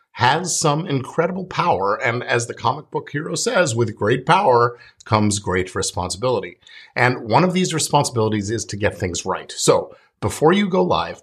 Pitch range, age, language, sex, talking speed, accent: 105-150 Hz, 50-69, English, male, 170 wpm, American